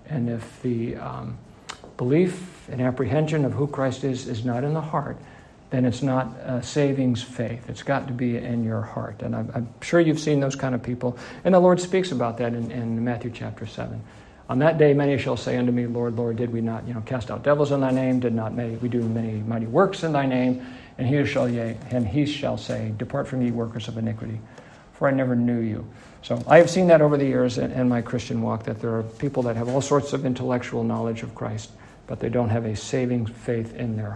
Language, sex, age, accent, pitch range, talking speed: English, male, 50-69, American, 115-140 Hz, 230 wpm